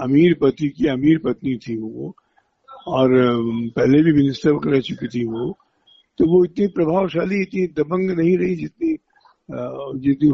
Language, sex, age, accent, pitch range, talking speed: Hindi, male, 60-79, native, 130-180 Hz, 145 wpm